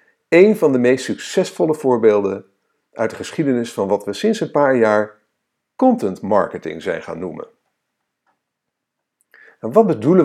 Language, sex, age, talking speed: Dutch, male, 50-69, 140 wpm